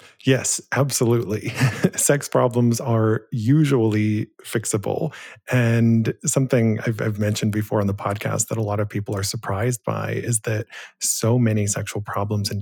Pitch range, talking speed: 105-120 Hz, 145 wpm